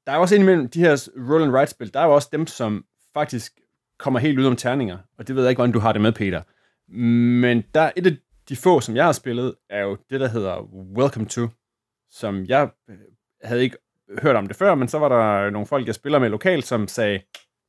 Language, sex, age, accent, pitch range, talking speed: Danish, male, 30-49, native, 110-140 Hz, 225 wpm